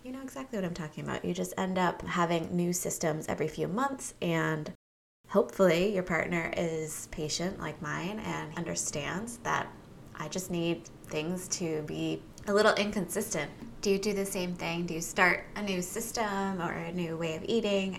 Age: 20-39